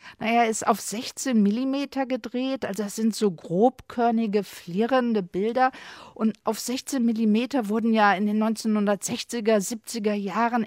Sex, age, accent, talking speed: female, 50-69, German, 135 wpm